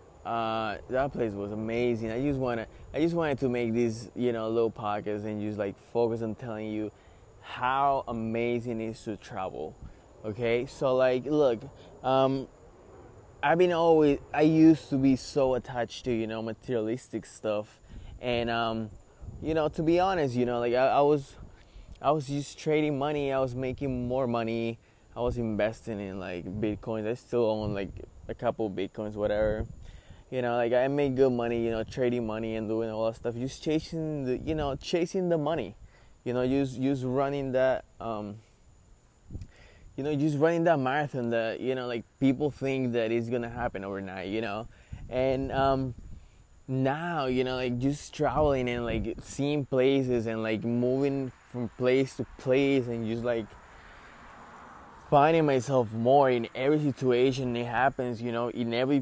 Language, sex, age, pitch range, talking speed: English, male, 20-39, 110-135 Hz, 175 wpm